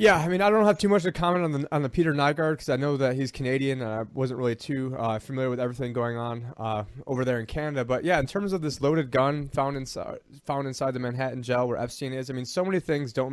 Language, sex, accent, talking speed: English, male, American, 280 wpm